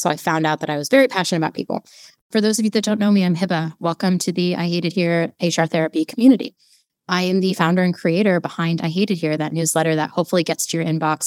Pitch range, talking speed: 160-195 Hz, 255 wpm